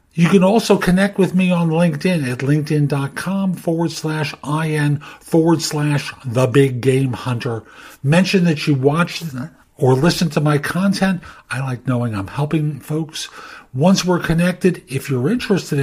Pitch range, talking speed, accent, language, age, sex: 145-185 Hz, 150 wpm, American, English, 50-69, male